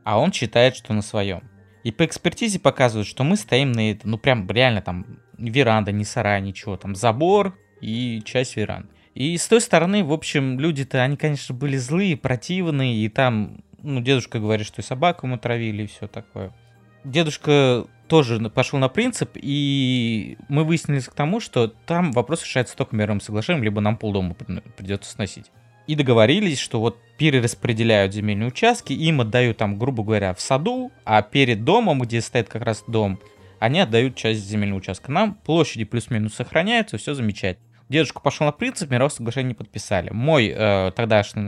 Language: Russian